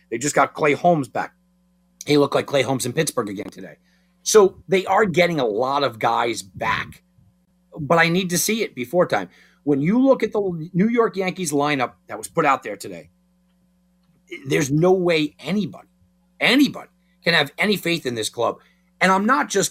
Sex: male